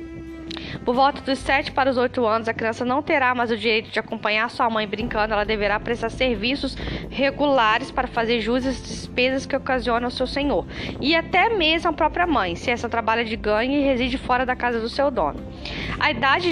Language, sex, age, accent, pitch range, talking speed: Portuguese, female, 10-29, Brazilian, 215-275 Hz, 205 wpm